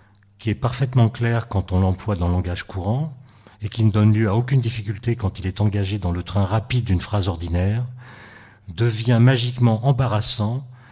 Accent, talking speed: French, 180 wpm